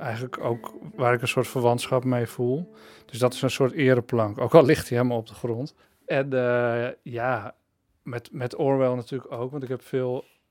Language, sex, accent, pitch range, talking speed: Dutch, male, Dutch, 120-135 Hz, 200 wpm